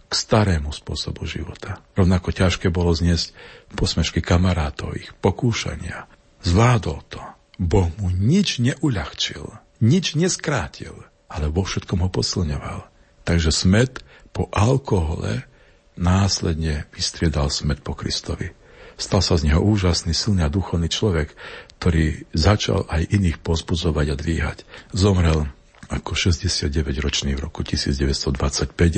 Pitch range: 75-95 Hz